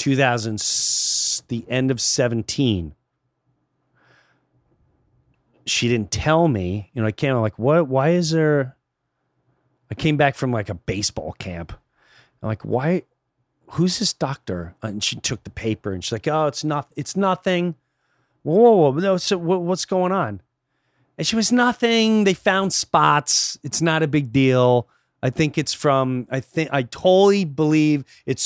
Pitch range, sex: 110-150 Hz, male